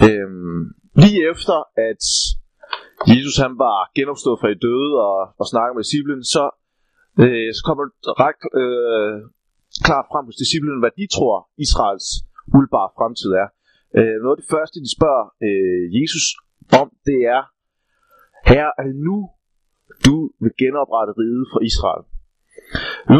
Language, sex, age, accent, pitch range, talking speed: Danish, male, 30-49, native, 115-155 Hz, 135 wpm